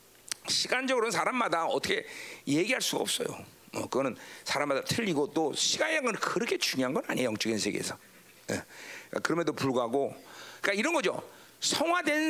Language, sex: Korean, male